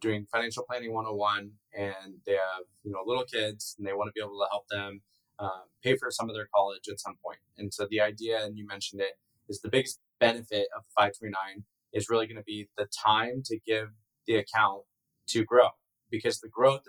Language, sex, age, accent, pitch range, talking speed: English, male, 20-39, American, 105-125 Hz, 210 wpm